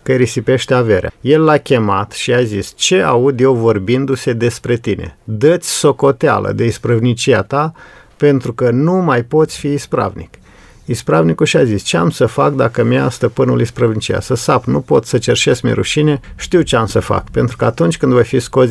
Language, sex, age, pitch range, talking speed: Romanian, male, 50-69, 110-145 Hz, 190 wpm